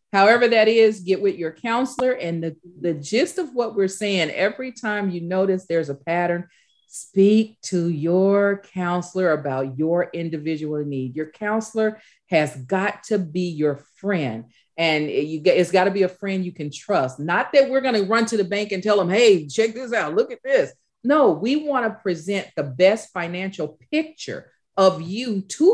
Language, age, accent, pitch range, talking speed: English, 40-59, American, 175-235 Hz, 185 wpm